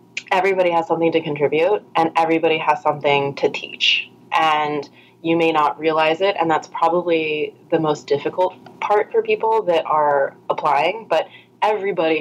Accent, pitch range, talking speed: American, 150-175 Hz, 150 wpm